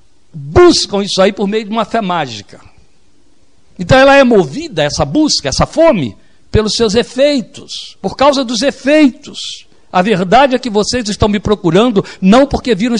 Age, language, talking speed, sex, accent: 60-79, Portuguese, 160 wpm, male, Brazilian